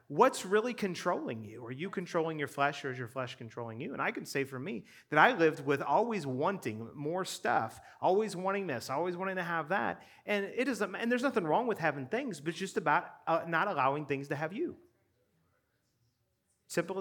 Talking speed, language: 210 wpm, English